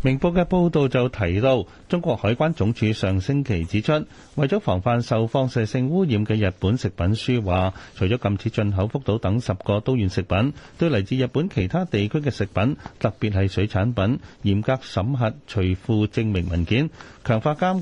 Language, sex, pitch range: Chinese, male, 95-130 Hz